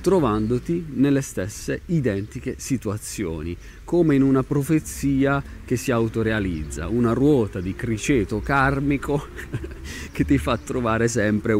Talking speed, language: 115 wpm, Italian